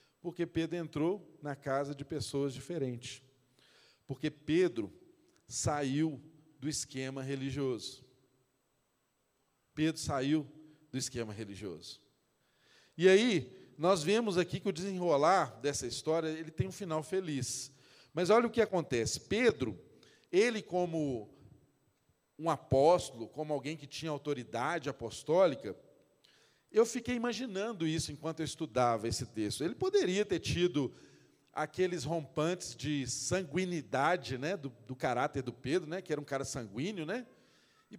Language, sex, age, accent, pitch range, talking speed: Portuguese, male, 40-59, Brazilian, 135-190 Hz, 130 wpm